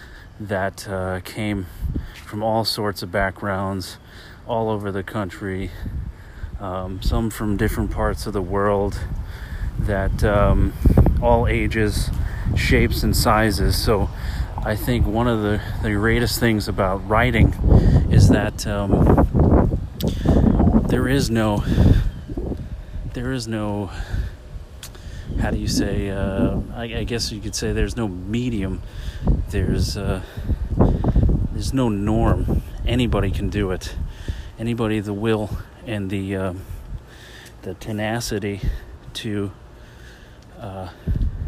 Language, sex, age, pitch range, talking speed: English, male, 30-49, 95-110 Hz, 115 wpm